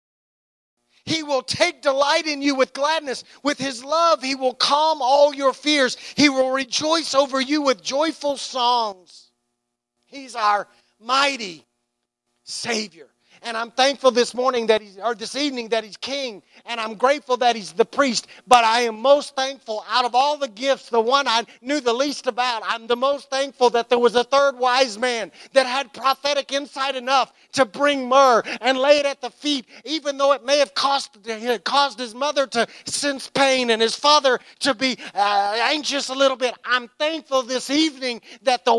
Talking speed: 185 wpm